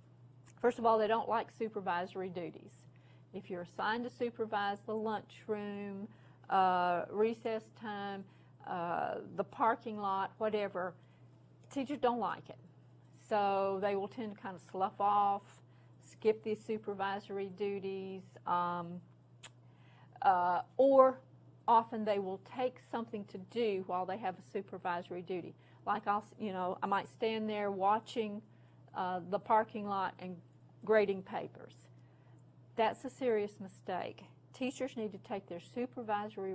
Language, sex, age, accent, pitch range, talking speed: English, female, 40-59, American, 180-220 Hz, 135 wpm